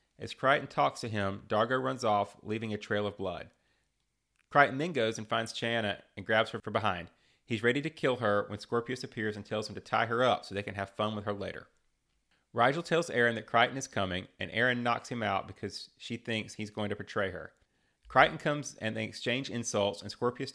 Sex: male